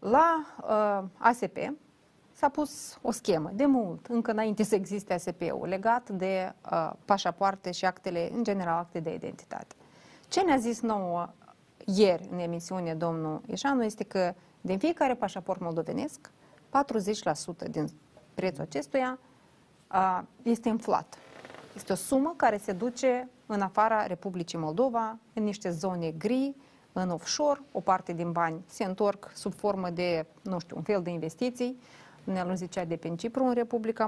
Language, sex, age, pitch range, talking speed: Romanian, female, 30-49, 180-245 Hz, 150 wpm